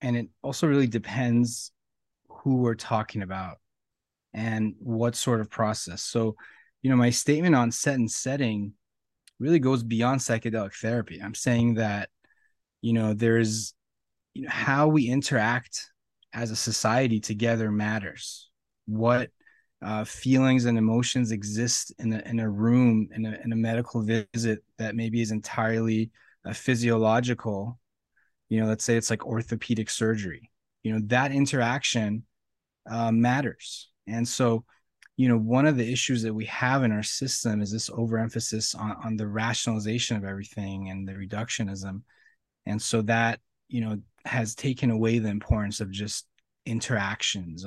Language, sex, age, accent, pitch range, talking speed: English, male, 20-39, American, 110-120 Hz, 150 wpm